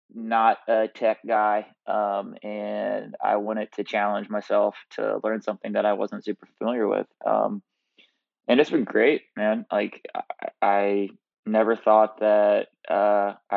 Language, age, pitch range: English, 20-39, 105-115 Hz